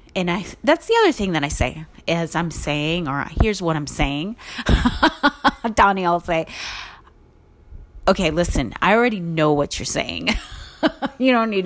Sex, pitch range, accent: female, 145-225 Hz, American